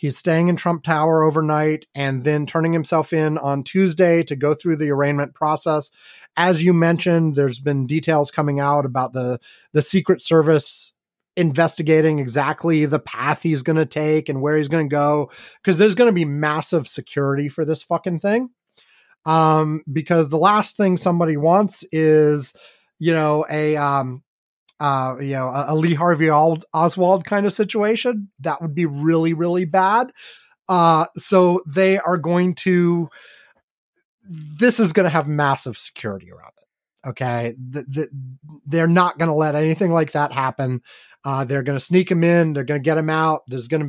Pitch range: 145-175 Hz